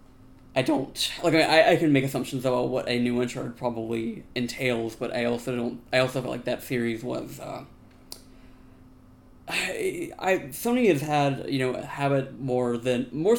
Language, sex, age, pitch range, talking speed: English, male, 20-39, 115-135 Hz, 185 wpm